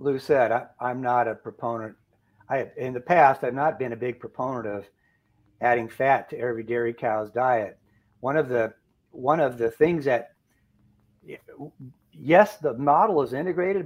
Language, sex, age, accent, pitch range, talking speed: English, male, 60-79, American, 120-155 Hz, 165 wpm